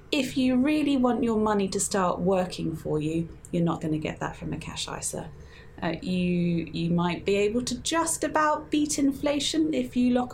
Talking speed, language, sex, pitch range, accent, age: 205 wpm, English, female, 185-250 Hz, British, 20-39